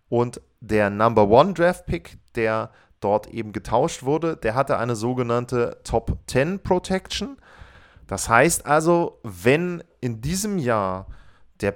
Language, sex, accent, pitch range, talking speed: German, male, German, 115-165 Hz, 135 wpm